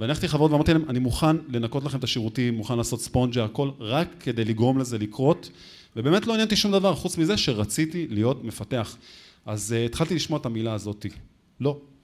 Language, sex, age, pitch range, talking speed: Hebrew, male, 30-49, 115-150 Hz, 190 wpm